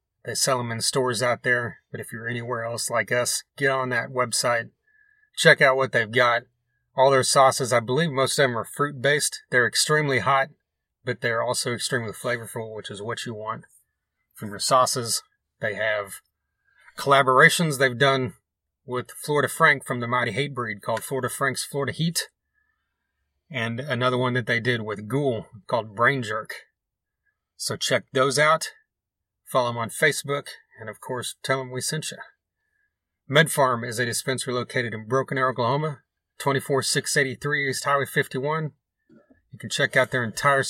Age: 30-49